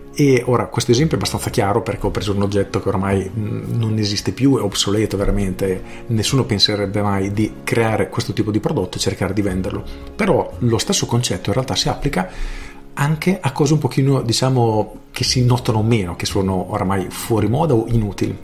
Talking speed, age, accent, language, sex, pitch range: 190 wpm, 40-59, native, Italian, male, 105-130 Hz